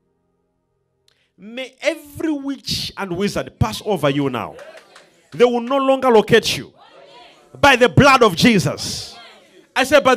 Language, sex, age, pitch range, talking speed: English, male, 50-69, 165-235 Hz, 135 wpm